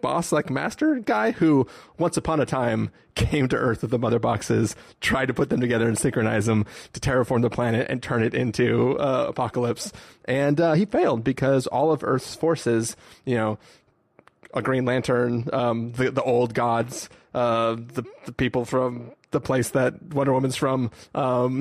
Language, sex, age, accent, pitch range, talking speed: English, male, 30-49, American, 115-140 Hz, 180 wpm